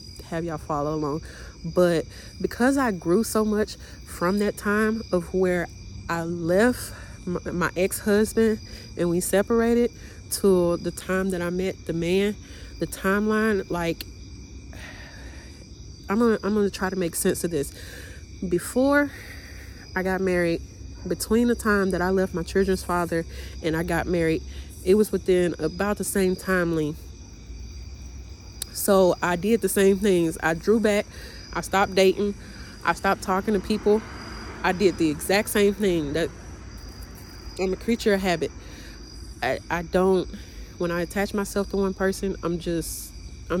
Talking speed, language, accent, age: 145 wpm, English, American, 30-49